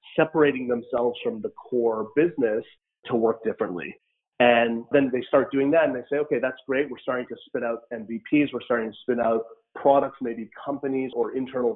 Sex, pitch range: male, 115-140 Hz